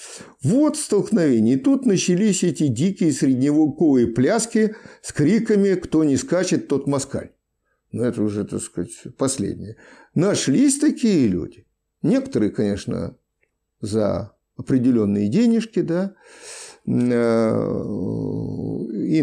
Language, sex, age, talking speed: Russian, male, 50-69, 100 wpm